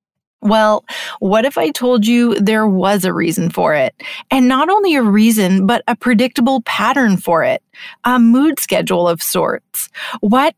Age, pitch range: 30-49, 195-245 Hz